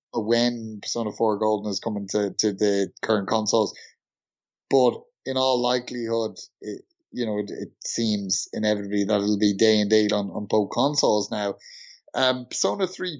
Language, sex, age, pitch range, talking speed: English, male, 30-49, 105-125 Hz, 165 wpm